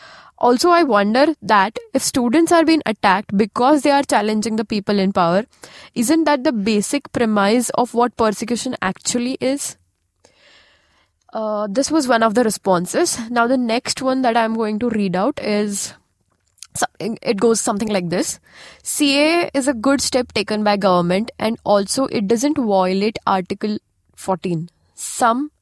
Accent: Indian